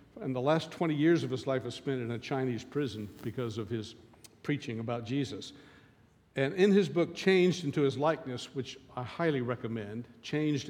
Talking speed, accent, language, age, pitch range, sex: 185 wpm, American, English, 60-79, 125-160 Hz, male